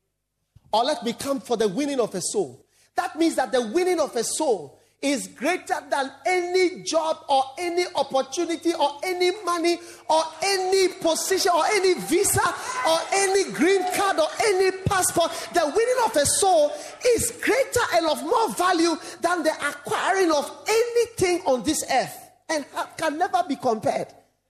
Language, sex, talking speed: English, male, 160 wpm